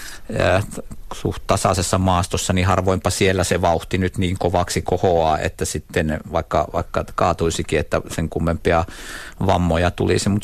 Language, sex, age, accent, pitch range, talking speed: Finnish, male, 50-69, native, 85-100 Hz, 140 wpm